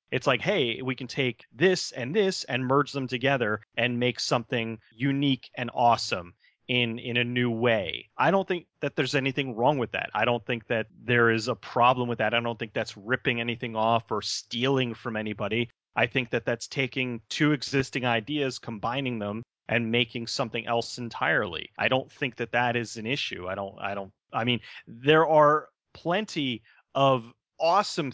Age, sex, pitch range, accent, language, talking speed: 30-49, male, 115-140 Hz, American, English, 190 wpm